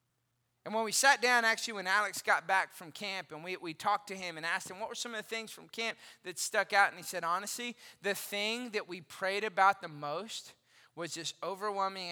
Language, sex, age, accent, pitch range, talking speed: English, male, 20-39, American, 190-275 Hz, 235 wpm